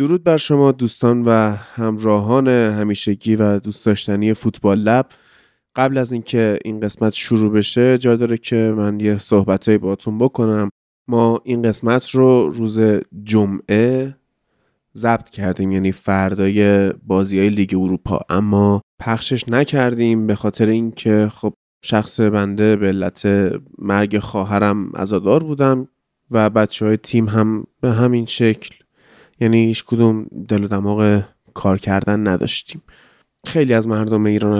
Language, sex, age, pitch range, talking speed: Persian, male, 20-39, 105-115 Hz, 135 wpm